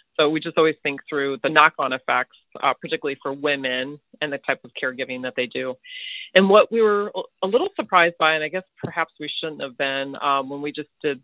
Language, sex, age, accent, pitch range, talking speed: English, female, 30-49, American, 140-170 Hz, 225 wpm